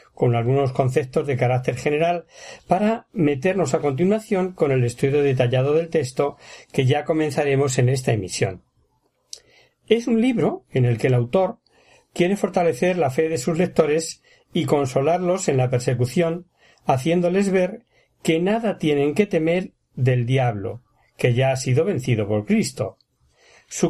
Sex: male